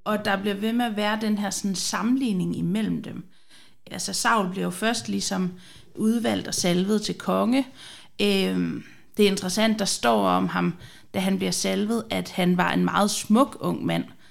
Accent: native